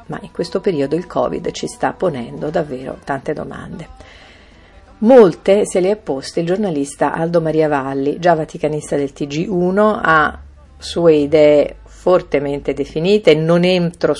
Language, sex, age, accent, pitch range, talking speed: Italian, female, 50-69, native, 140-195 Hz, 140 wpm